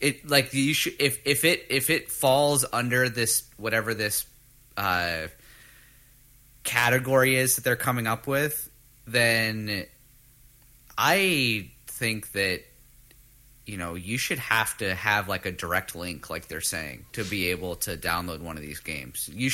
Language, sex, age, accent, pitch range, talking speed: English, male, 30-49, American, 95-130 Hz, 155 wpm